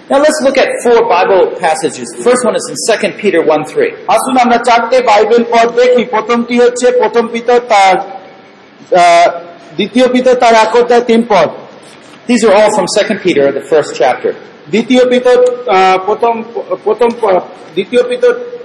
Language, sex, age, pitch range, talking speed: Bengali, male, 40-59, 210-255 Hz, 85 wpm